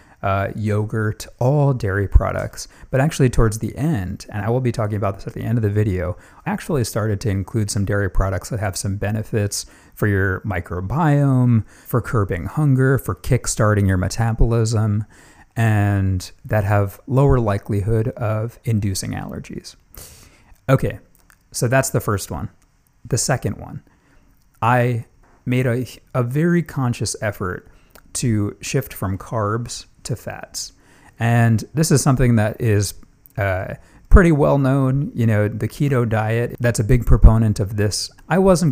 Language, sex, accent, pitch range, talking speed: English, male, American, 100-130 Hz, 150 wpm